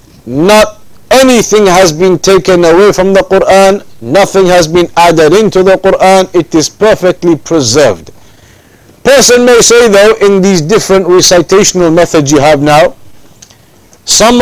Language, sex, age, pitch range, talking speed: English, male, 50-69, 140-185 Hz, 135 wpm